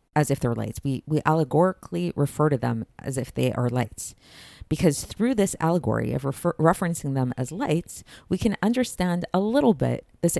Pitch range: 130-155 Hz